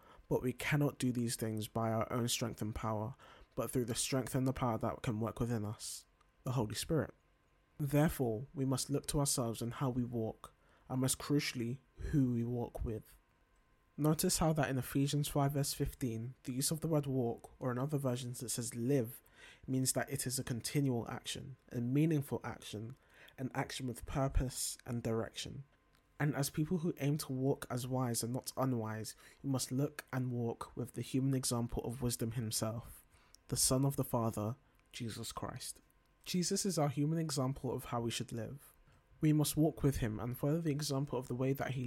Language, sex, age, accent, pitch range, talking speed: English, male, 20-39, British, 115-140 Hz, 195 wpm